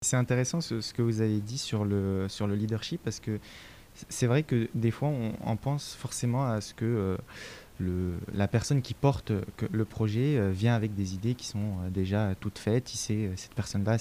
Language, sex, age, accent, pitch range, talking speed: French, male, 20-39, French, 100-120 Hz, 195 wpm